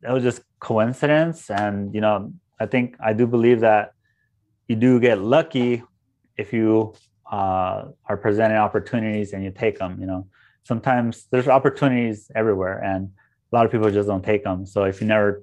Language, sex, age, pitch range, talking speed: English, male, 20-39, 100-115 Hz, 180 wpm